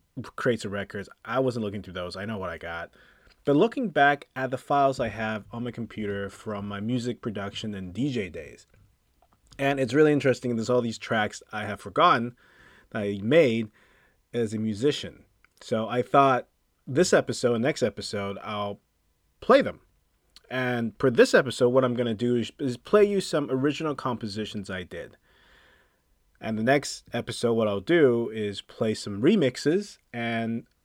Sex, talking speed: male, 170 wpm